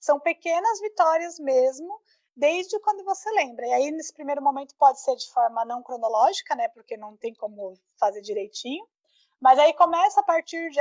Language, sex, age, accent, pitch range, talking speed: Portuguese, female, 20-39, Brazilian, 255-340 Hz, 180 wpm